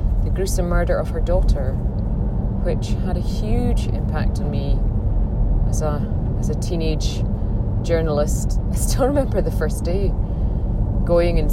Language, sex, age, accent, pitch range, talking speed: English, female, 30-49, British, 95-110 Hz, 140 wpm